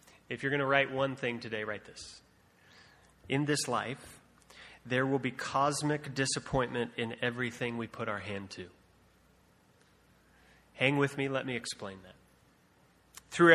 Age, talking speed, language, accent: 30-49, 145 wpm, English, American